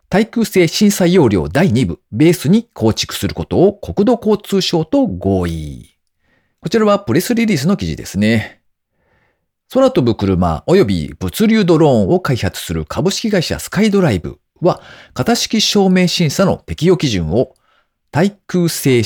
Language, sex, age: Japanese, male, 40-59